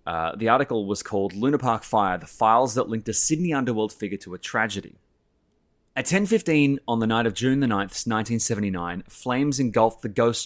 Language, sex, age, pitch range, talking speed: English, male, 20-39, 100-130 Hz, 190 wpm